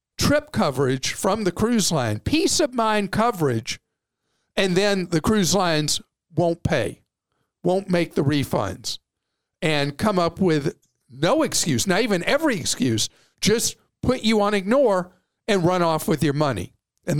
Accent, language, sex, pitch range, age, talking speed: American, English, male, 140-195 Hz, 50-69, 150 wpm